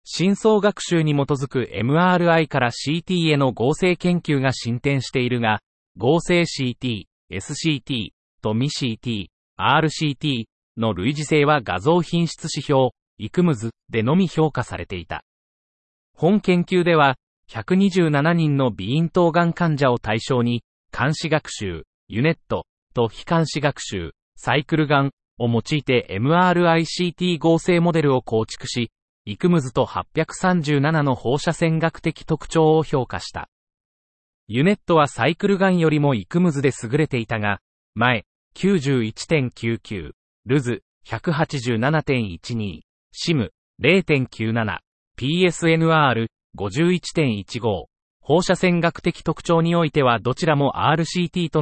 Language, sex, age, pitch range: Japanese, male, 40-59, 120-165 Hz